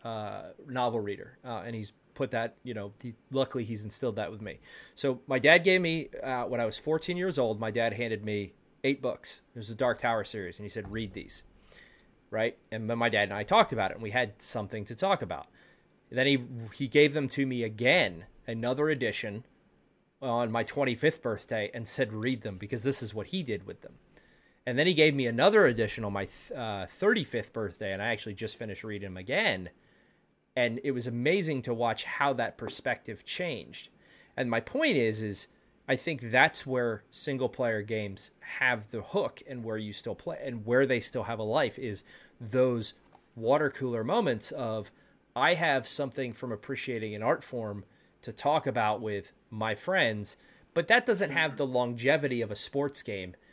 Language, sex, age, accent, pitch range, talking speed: English, male, 30-49, American, 110-135 Hz, 200 wpm